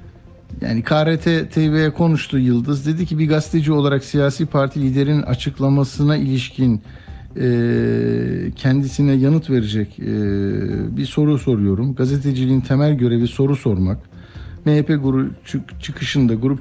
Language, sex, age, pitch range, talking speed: Turkish, male, 60-79, 110-145 Hz, 110 wpm